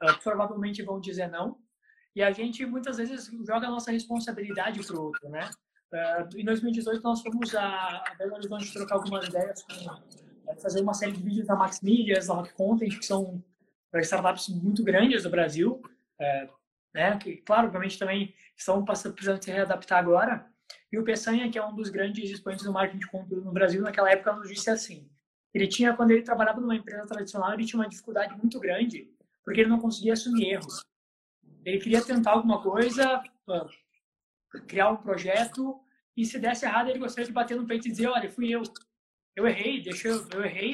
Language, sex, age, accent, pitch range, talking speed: Portuguese, male, 20-39, Brazilian, 195-235 Hz, 185 wpm